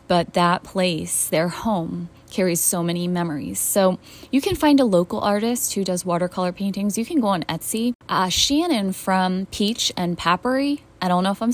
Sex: female